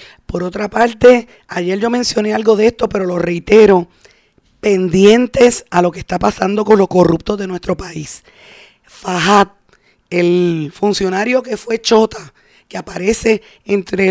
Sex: female